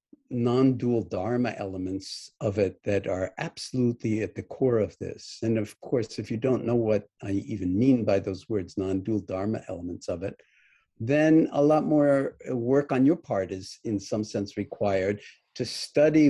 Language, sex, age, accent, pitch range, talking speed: English, male, 50-69, American, 100-130 Hz, 175 wpm